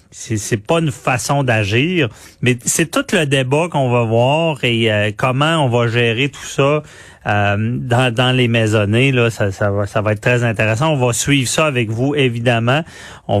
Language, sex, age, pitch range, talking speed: French, male, 30-49, 110-140 Hz, 195 wpm